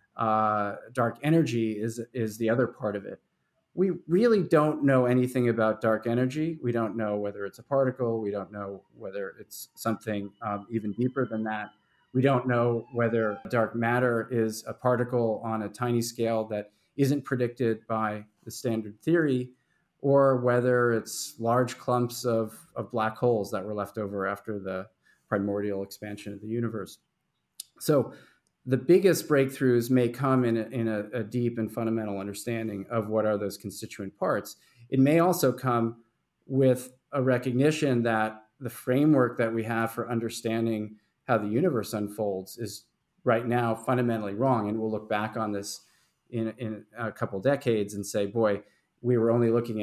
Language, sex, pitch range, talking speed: English, male, 105-125 Hz, 170 wpm